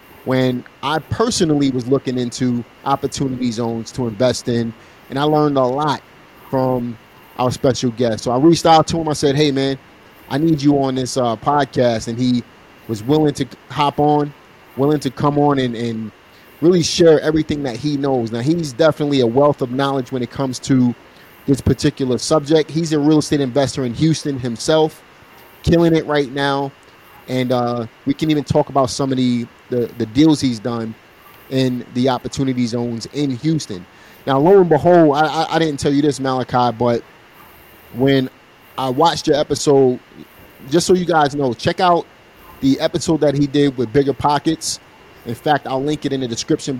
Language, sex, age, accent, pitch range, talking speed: English, male, 30-49, American, 125-150 Hz, 180 wpm